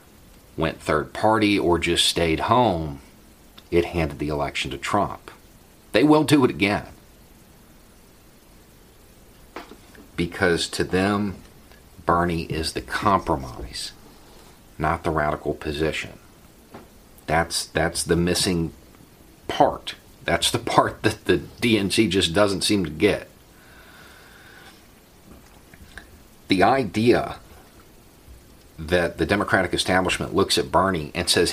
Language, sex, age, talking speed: English, male, 40-59, 105 wpm